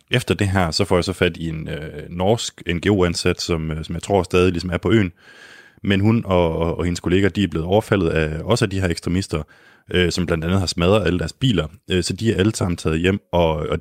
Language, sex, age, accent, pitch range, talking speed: Danish, male, 20-39, native, 80-95 Hz, 260 wpm